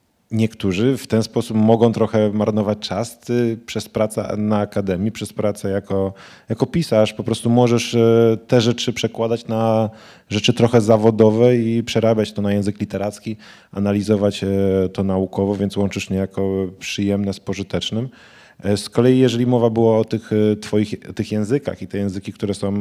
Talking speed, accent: 155 wpm, native